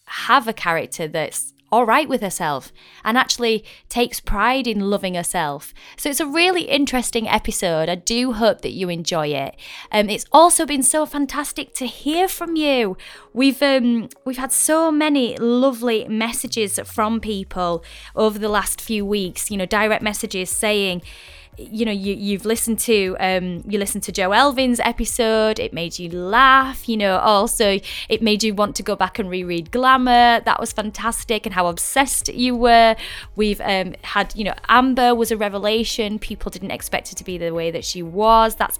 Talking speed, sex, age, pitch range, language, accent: 180 wpm, female, 20-39, 195-245 Hz, English, British